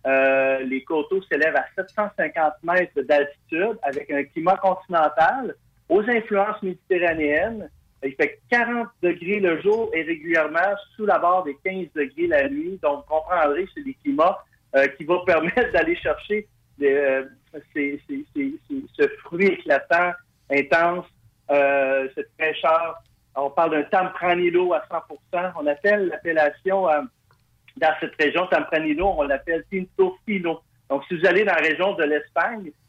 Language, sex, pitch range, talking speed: French, male, 145-195 Hz, 140 wpm